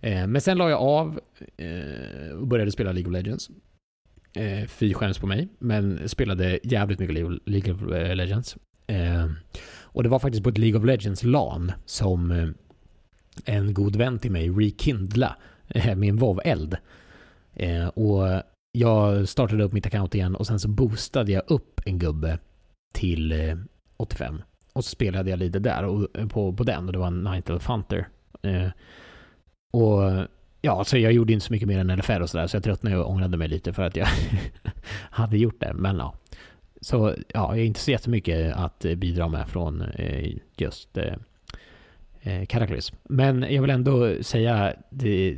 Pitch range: 90-115 Hz